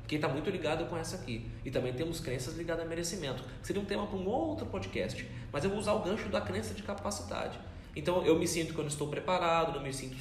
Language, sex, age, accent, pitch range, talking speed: Portuguese, male, 20-39, Brazilian, 160-230 Hz, 255 wpm